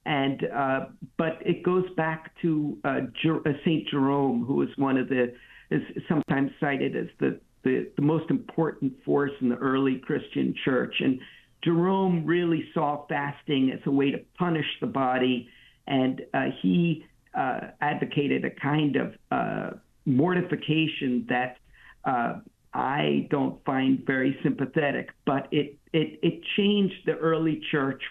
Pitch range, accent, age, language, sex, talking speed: 130-160 Hz, American, 50-69, English, male, 145 wpm